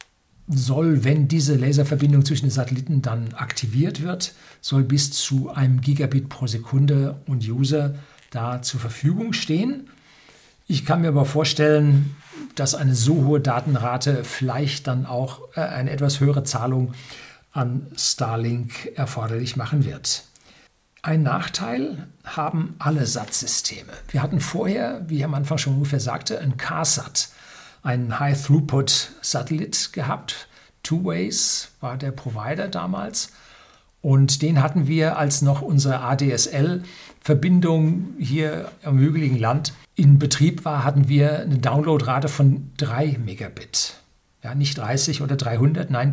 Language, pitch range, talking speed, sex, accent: German, 130-150 Hz, 130 wpm, male, German